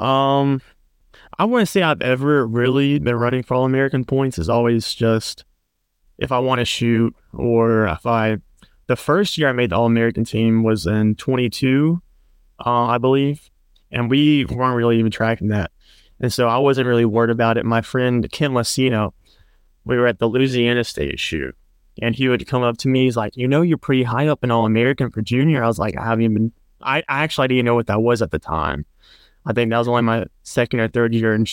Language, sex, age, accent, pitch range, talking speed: English, male, 20-39, American, 110-130 Hz, 215 wpm